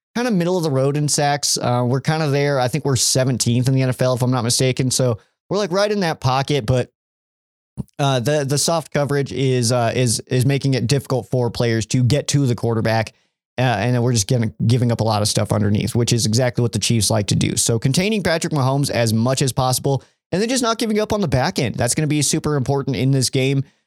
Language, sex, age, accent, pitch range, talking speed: English, male, 20-39, American, 120-150 Hz, 250 wpm